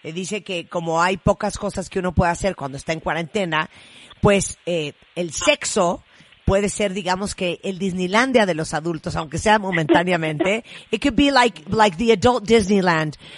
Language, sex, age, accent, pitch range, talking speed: Spanish, female, 40-59, American, 165-210 Hz, 170 wpm